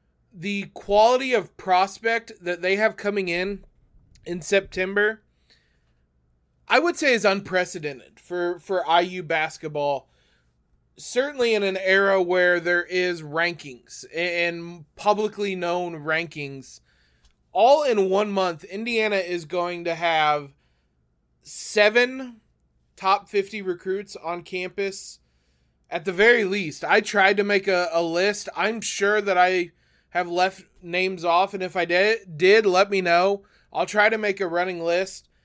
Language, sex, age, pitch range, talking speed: English, male, 20-39, 165-200 Hz, 135 wpm